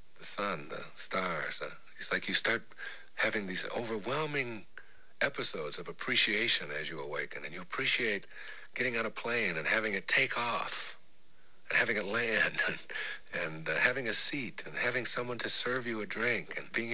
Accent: American